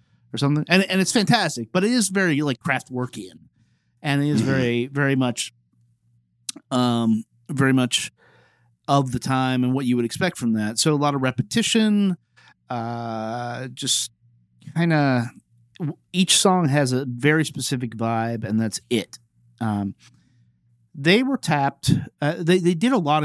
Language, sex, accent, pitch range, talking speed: English, male, American, 115-155 Hz, 160 wpm